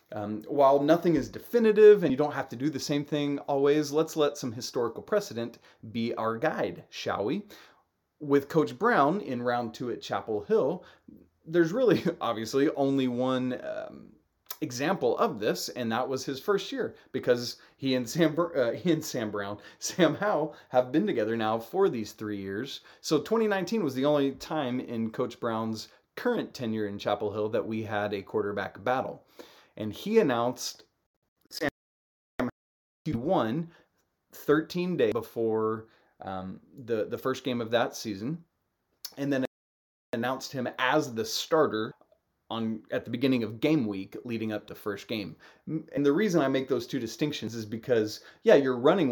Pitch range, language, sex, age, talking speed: 110-150 Hz, English, male, 30-49, 160 wpm